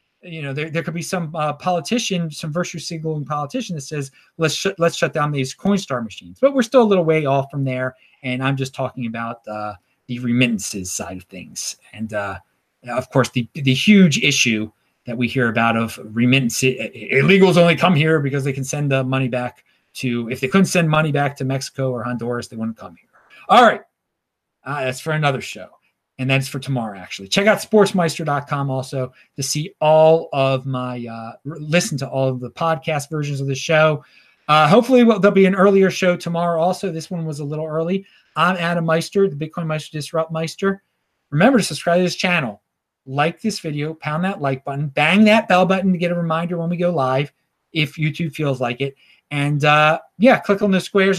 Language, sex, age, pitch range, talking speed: English, male, 30-49, 130-170 Hz, 205 wpm